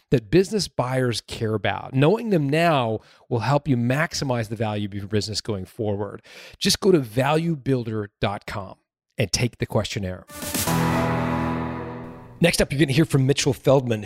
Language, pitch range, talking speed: English, 105-135 Hz, 150 wpm